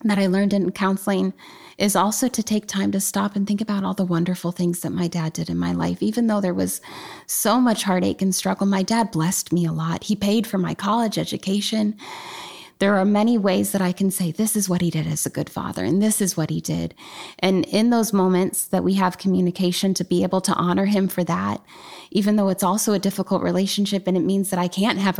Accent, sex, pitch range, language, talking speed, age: American, female, 175-200 Hz, English, 240 wpm, 20-39